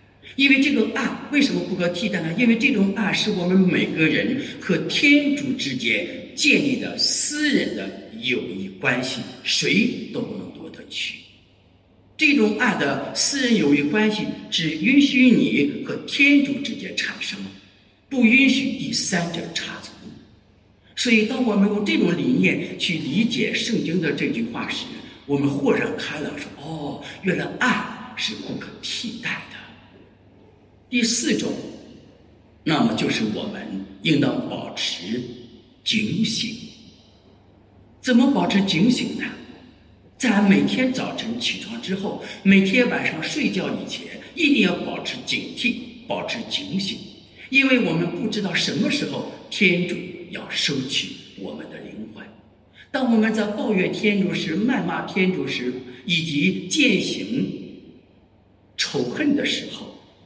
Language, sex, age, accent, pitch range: English, male, 60-79, Chinese, 165-255 Hz